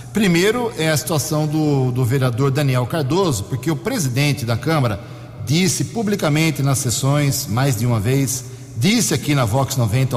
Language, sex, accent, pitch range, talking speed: Portuguese, male, Brazilian, 125-165 Hz, 160 wpm